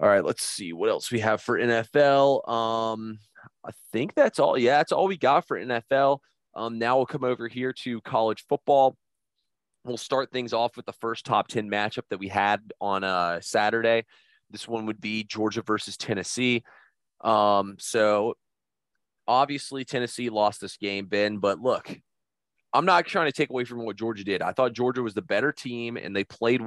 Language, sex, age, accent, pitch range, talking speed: English, male, 30-49, American, 105-125 Hz, 190 wpm